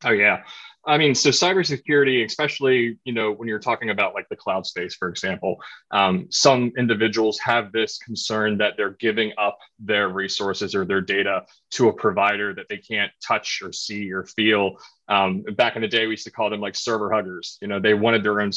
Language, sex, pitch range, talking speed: English, male, 105-125 Hz, 205 wpm